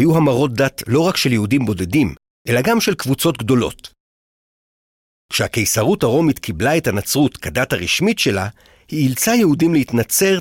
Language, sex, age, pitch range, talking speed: Hebrew, male, 50-69, 105-150 Hz, 145 wpm